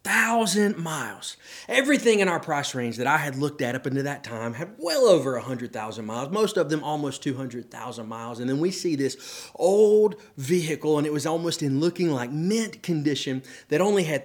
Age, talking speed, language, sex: 30-49, 200 wpm, English, male